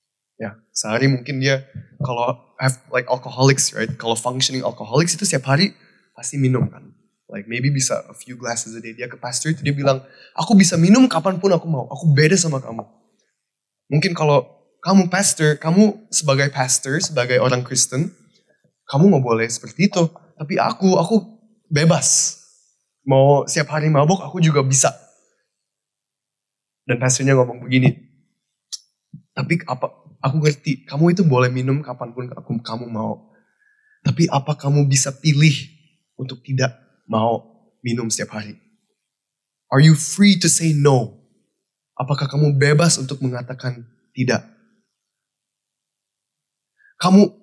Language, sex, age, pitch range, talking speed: Indonesian, male, 20-39, 130-185 Hz, 140 wpm